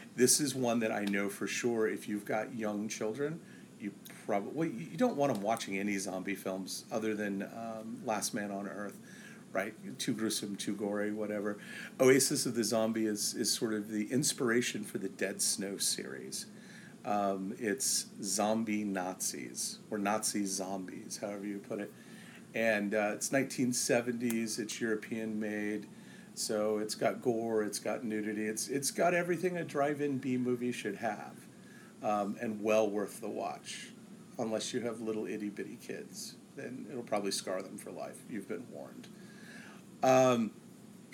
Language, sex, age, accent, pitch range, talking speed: English, male, 40-59, American, 105-135 Hz, 160 wpm